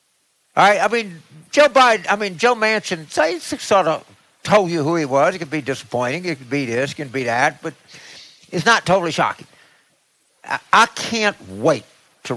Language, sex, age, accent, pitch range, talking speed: English, male, 60-79, American, 160-220 Hz, 185 wpm